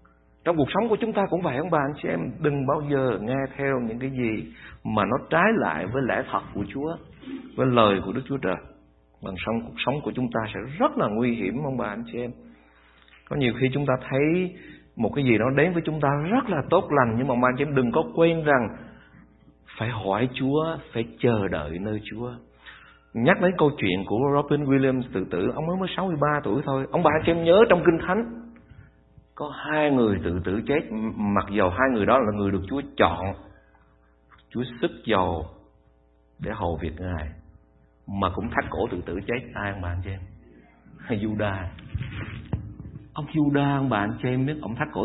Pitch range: 90-135 Hz